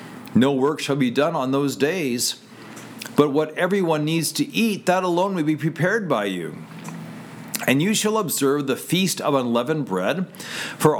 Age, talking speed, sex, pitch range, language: 50-69, 170 wpm, male, 130-180 Hz, English